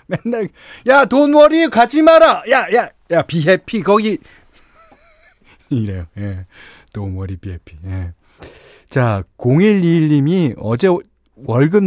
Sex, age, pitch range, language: male, 40-59, 100-165 Hz, Korean